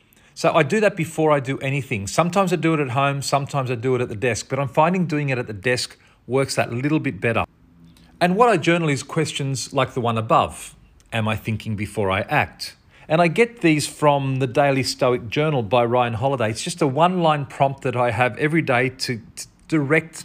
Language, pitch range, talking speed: English, 115-155 Hz, 220 wpm